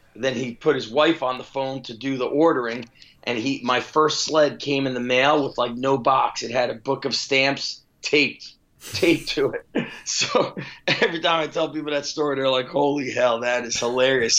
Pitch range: 125-145 Hz